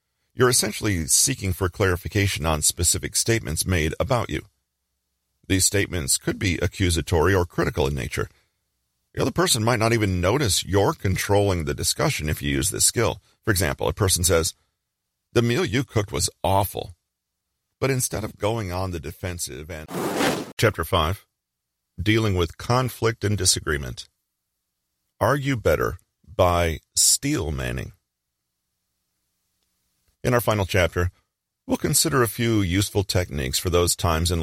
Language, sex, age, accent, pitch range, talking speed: English, male, 40-59, American, 75-110 Hz, 140 wpm